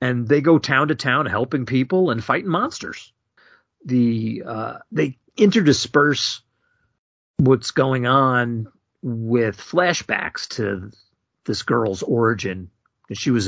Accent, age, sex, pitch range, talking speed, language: American, 40-59, male, 105-130 Hz, 115 wpm, English